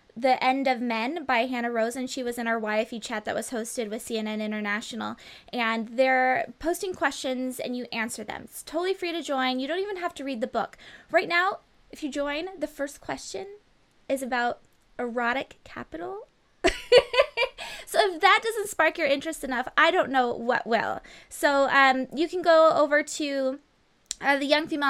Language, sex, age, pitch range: English, female, 20-39, 230-295 Hz